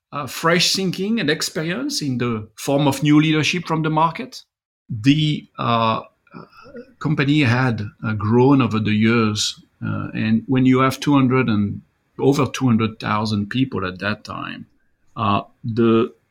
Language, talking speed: English, 140 wpm